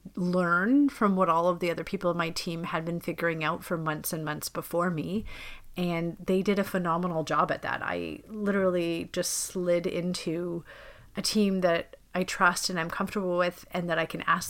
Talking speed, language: 200 wpm, English